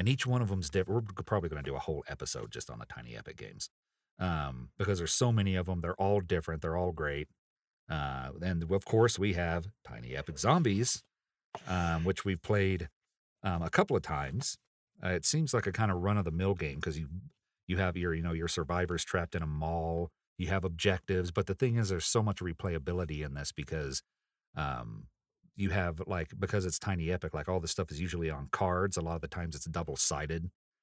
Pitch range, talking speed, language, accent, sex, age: 80-100 Hz, 220 wpm, English, American, male, 40-59